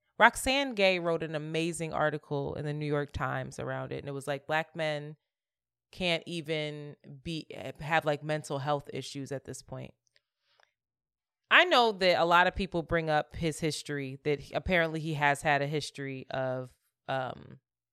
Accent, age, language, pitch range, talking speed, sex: American, 20-39, English, 135-175 Hz, 170 wpm, female